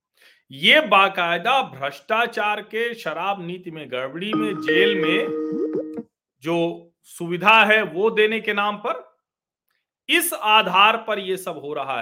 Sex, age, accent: male, 40-59, native